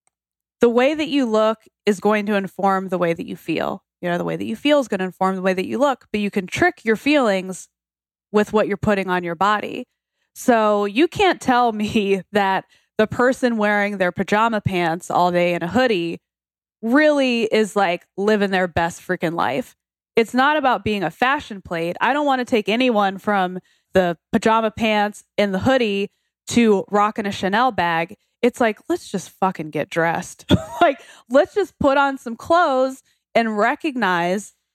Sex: female